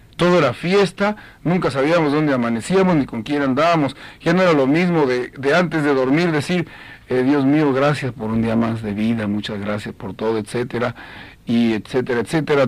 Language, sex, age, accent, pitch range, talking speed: Spanish, male, 50-69, Mexican, 115-160 Hz, 190 wpm